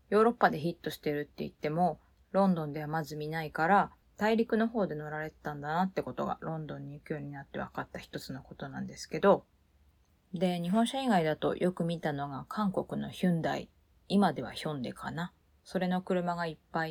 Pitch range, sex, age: 145-185 Hz, female, 20-39